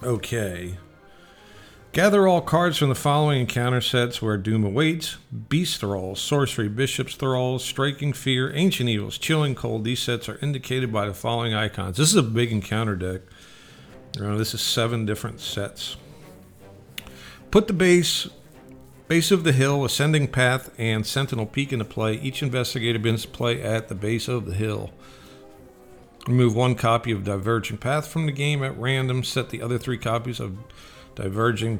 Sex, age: male, 50-69